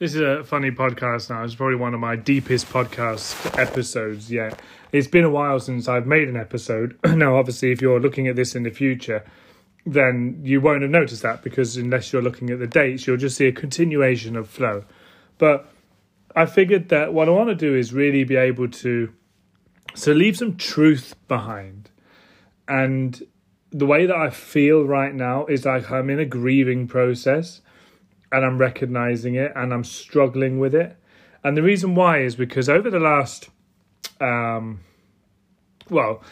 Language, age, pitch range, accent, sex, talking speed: English, 30-49, 120-145 Hz, British, male, 180 wpm